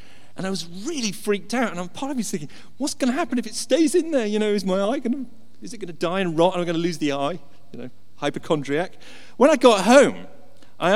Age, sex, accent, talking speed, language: 40-59, male, British, 275 wpm, English